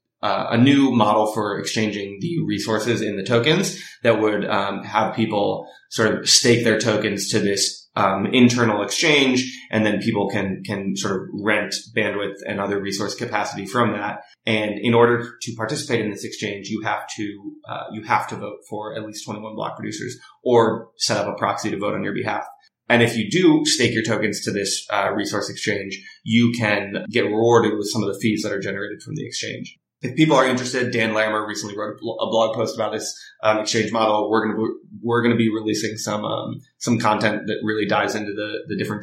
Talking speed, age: 210 wpm, 20-39